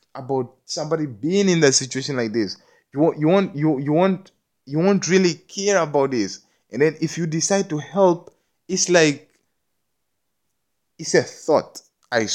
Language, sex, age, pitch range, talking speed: English, male, 20-39, 115-150 Hz, 165 wpm